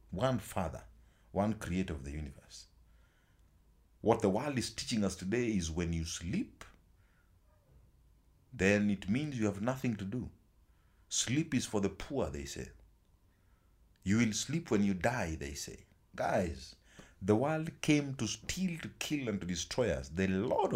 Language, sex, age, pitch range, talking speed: English, male, 50-69, 85-110 Hz, 160 wpm